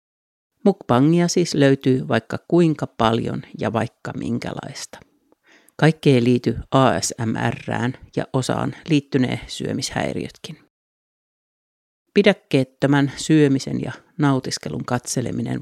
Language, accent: Finnish, native